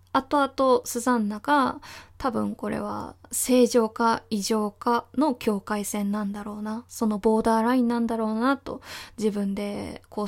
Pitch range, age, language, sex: 210-250 Hz, 20-39, Japanese, female